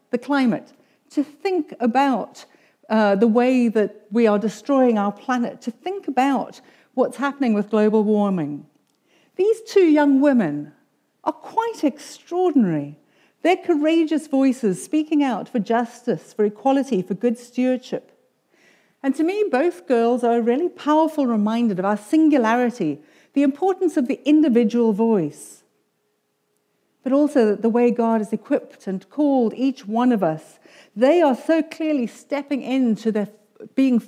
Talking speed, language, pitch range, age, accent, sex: 140 wpm, English, 215-285 Hz, 60-79, British, female